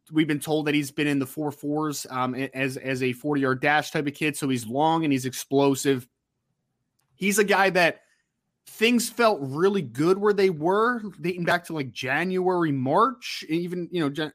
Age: 20-39